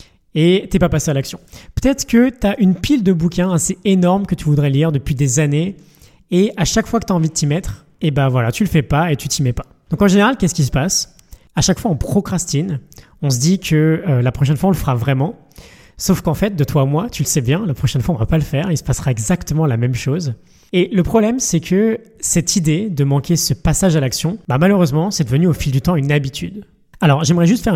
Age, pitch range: 20-39, 145-185 Hz